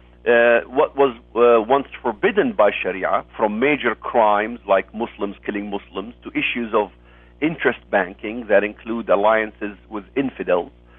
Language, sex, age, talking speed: English, male, 50-69, 135 wpm